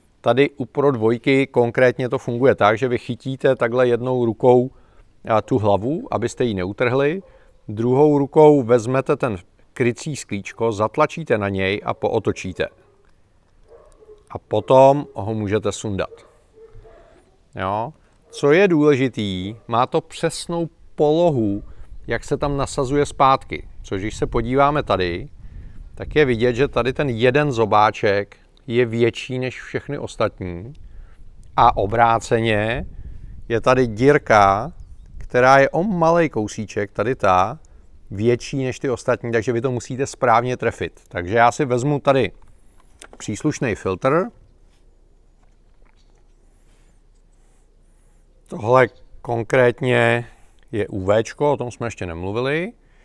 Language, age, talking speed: Czech, 40-59, 115 wpm